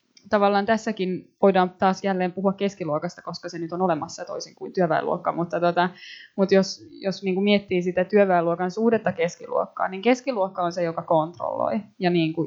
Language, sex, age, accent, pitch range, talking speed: Finnish, female, 20-39, native, 175-200 Hz, 165 wpm